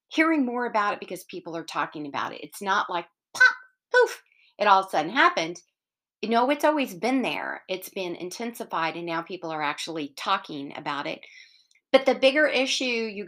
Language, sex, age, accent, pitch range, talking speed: English, female, 40-59, American, 170-235 Hz, 195 wpm